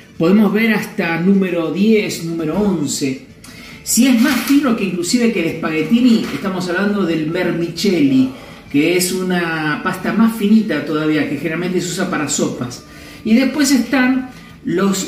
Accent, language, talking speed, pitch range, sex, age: Argentinian, Spanish, 145 wpm, 185-245 Hz, male, 50-69